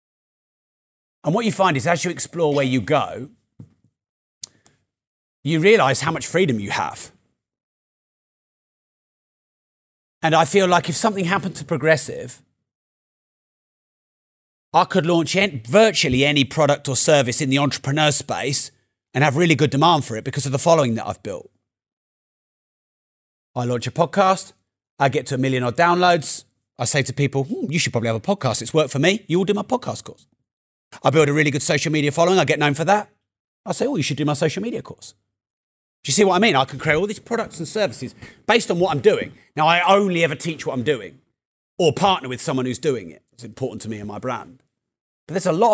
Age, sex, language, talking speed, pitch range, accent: 30-49, male, English, 200 wpm, 125-170 Hz, British